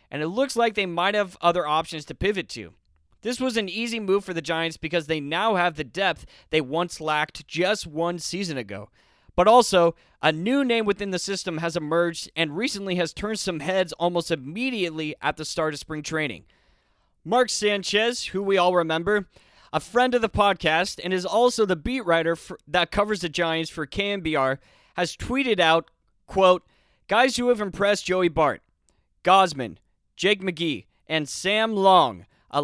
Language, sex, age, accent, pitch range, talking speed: English, male, 30-49, American, 155-200 Hz, 180 wpm